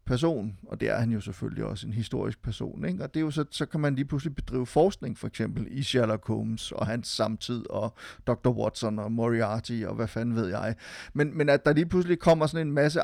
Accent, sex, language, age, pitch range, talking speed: native, male, Danish, 30-49, 115-140 Hz, 240 wpm